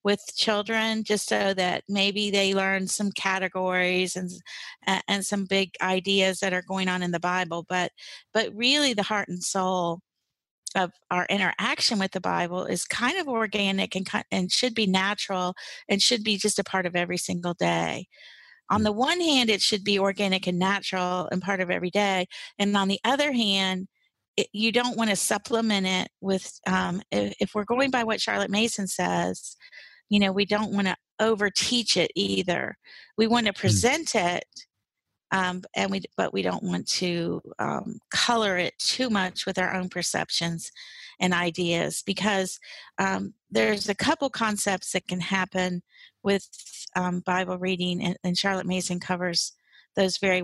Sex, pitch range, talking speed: female, 180-210 Hz, 170 wpm